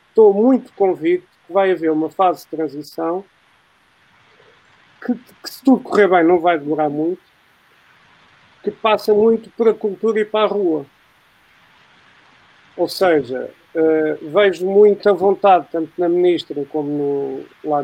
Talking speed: 145 wpm